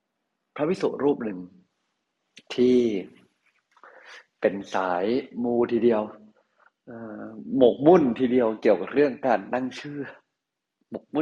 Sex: male